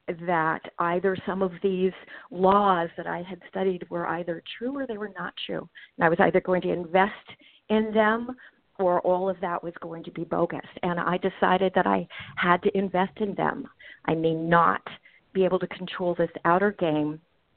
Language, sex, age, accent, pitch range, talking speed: English, female, 40-59, American, 170-195 Hz, 190 wpm